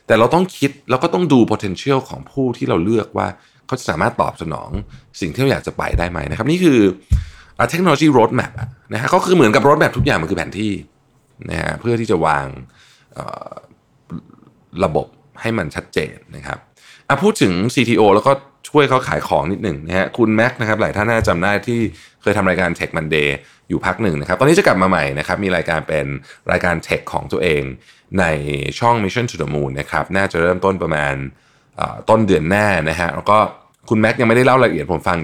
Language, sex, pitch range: Thai, male, 80-120 Hz